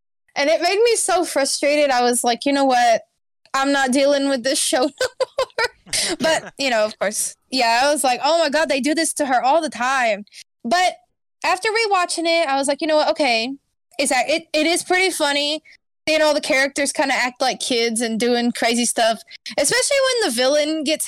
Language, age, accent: English, 10-29, American